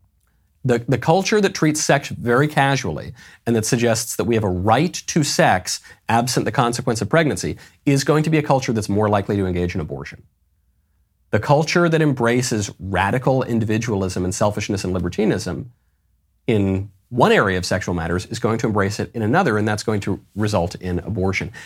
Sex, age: male, 40-59